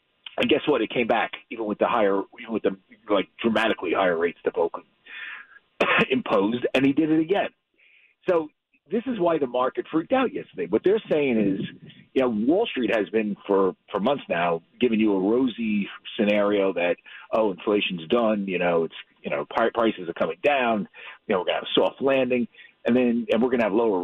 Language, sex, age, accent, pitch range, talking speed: English, male, 40-59, American, 105-160 Hz, 205 wpm